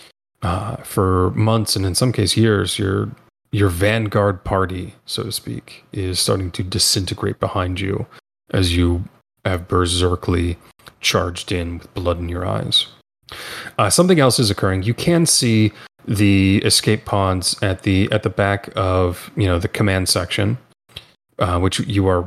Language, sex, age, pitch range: English, male, 30-49, 90-110 Hz